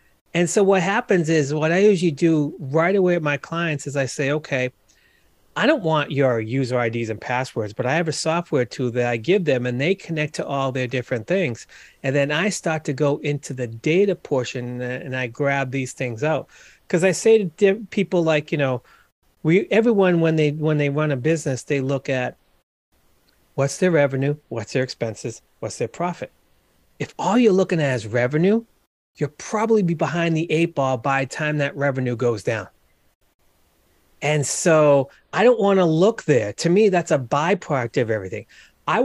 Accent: American